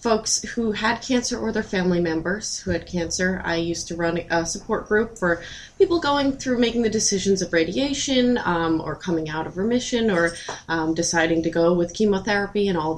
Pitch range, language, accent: 175-235 Hz, English, American